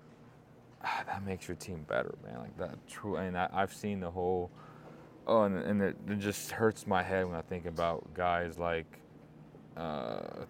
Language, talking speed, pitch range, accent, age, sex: English, 190 wpm, 85-100 Hz, American, 20-39, male